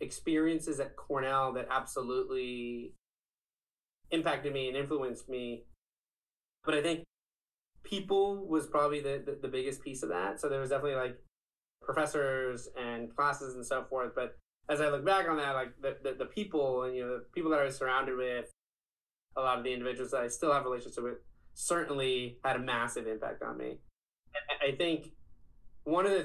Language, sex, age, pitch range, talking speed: English, male, 20-39, 125-150 Hz, 185 wpm